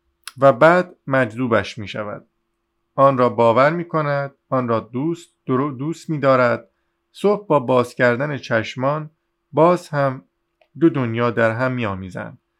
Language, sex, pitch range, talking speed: Persian, male, 110-140 Hz, 135 wpm